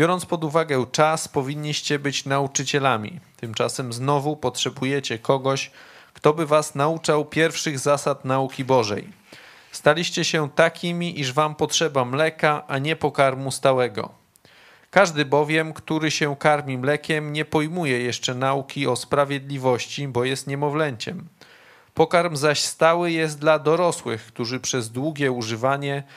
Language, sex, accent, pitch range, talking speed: Polish, male, native, 130-155 Hz, 125 wpm